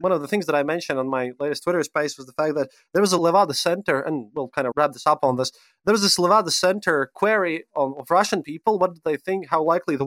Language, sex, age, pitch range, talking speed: English, male, 30-49, 145-190 Hz, 280 wpm